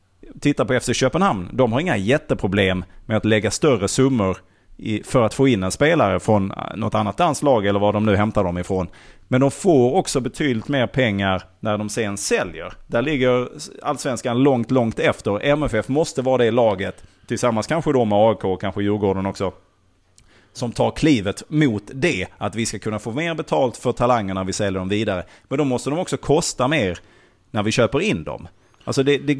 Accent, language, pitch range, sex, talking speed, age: Norwegian, Swedish, 100-135 Hz, male, 195 wpm, 30-49